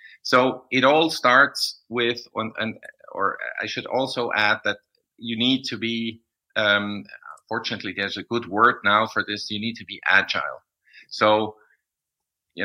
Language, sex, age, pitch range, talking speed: English, male, 50-69, 110-130 Hz, 150 wpm